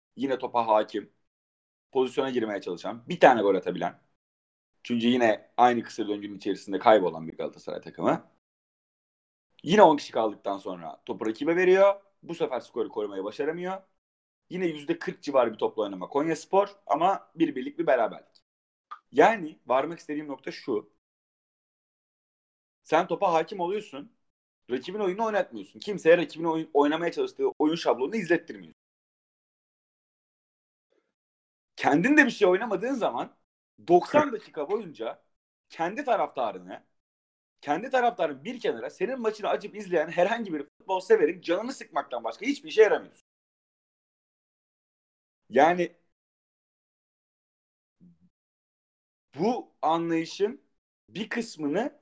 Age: 30-49